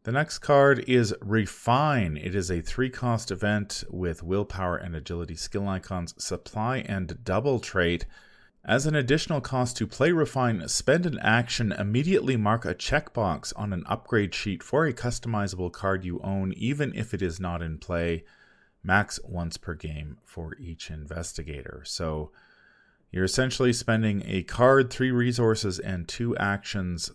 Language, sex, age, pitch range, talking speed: English, male, 30-49, 85-110 Hz, 150 wpm